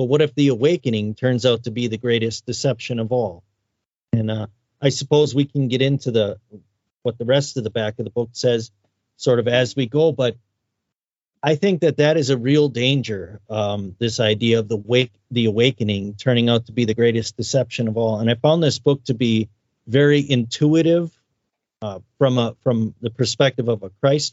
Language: English